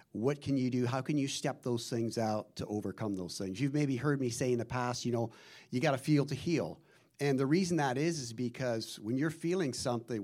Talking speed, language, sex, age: 245 wpm, English, male, 50-69